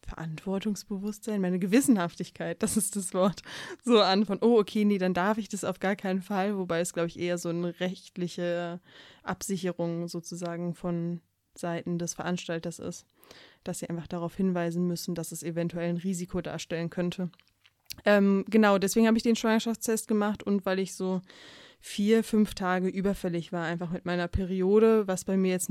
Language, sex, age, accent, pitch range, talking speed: German, female, 20-39, German, 175-200 Hz, 175 wpm